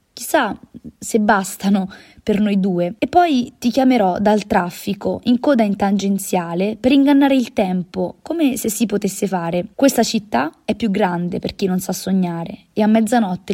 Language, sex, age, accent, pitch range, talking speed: Italian, female, 20-39, native, 190-235 Hz, 170 wpm